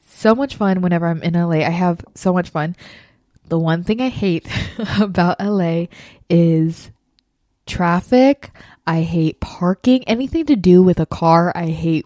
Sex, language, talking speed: female, English, 160 wpm